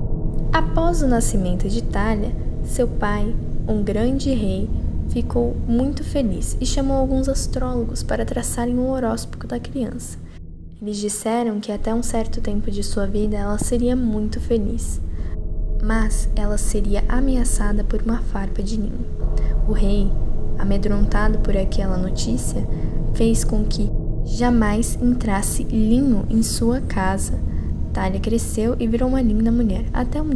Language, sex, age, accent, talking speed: Portuguese, female, 10-29, Brazilian, 140 wpm